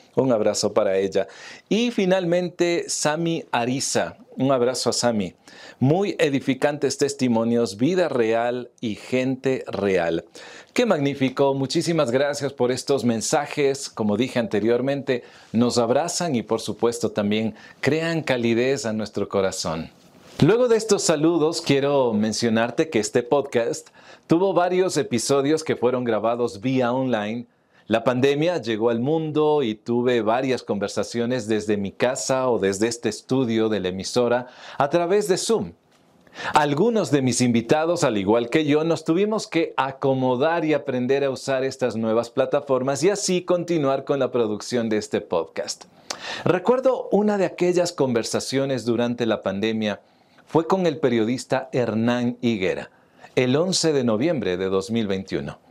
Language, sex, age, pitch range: Spanish, male, 40-59, 115-155 Hz